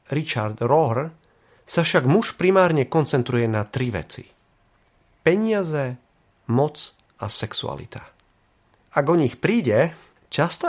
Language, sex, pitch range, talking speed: Slovak, male, 120-160 Hz, 105 wpm